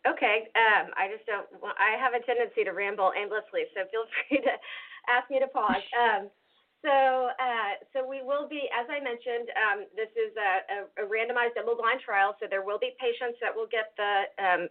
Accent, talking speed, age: American, 205 wpm, 40-59